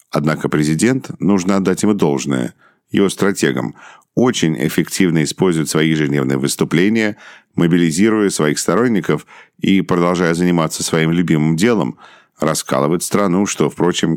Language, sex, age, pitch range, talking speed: English, male, 50-69, 80-95 Hz, 115 wpm